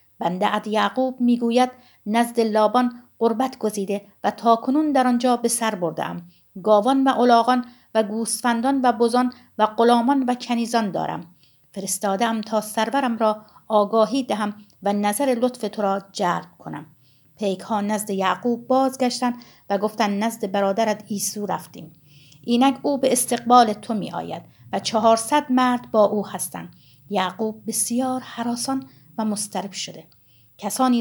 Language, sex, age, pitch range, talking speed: Persian, female, 50-69, 205-250 Hz, 135 wpm